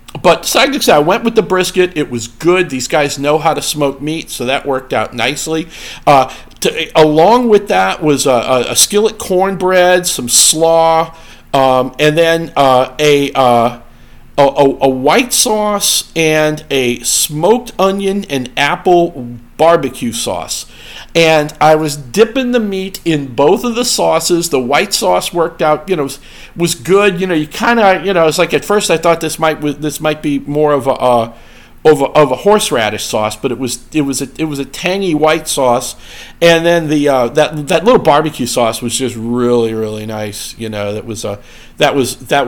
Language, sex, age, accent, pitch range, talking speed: English, male, 50-69, American, 130-175 Hz, 195 wpm